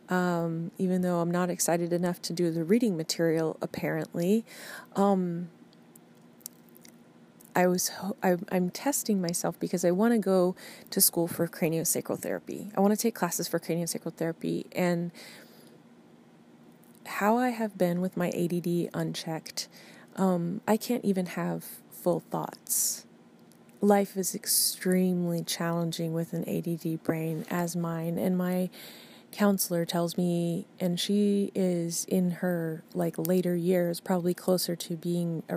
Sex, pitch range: female, 170-200 Hz